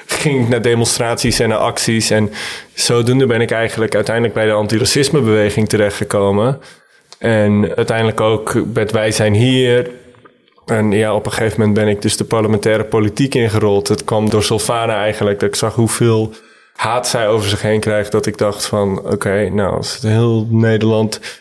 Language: Dutch